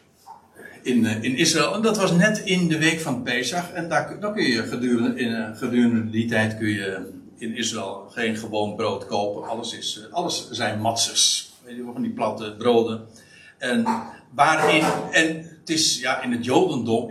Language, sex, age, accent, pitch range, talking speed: Dutch, male, 60-79, Dutch, 110-160 Hz, 190 wpm